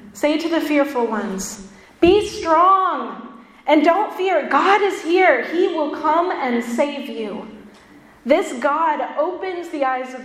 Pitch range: 235-300 Hz